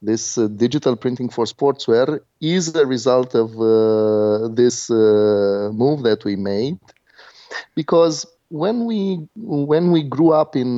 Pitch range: 120-155 Hz